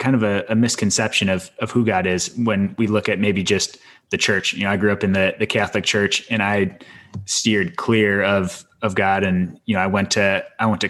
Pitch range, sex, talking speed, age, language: 95-110 Hz, male, 240 wpm, 20-39, English